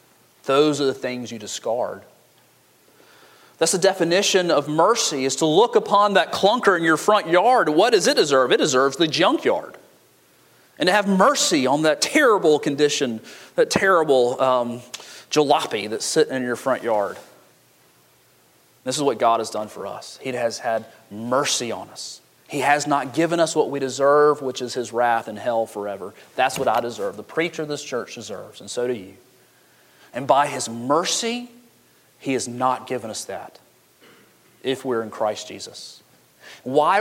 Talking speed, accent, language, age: 170 wpm, American, English, 30-49